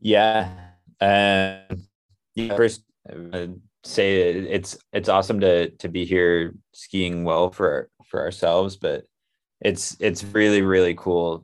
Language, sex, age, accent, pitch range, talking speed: English, male, 20-39, American, 85-95 Hz, 130 wpm